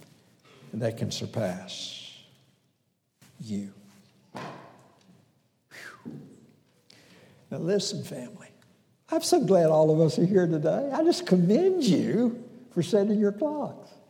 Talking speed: 105 wpm